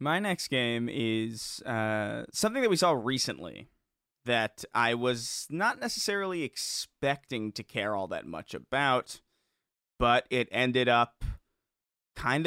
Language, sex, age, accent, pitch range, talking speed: English, male, 20-39, American, 115-145 Hz, 130 wpm